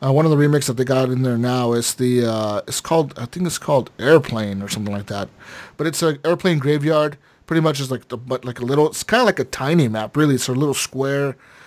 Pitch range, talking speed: 125-160 Hz, 260 wpm